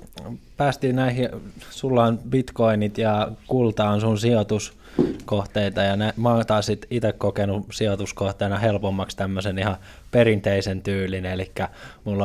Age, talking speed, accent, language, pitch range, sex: 20-39, 120 wpm, native, Finnish, 100-115 Hz, male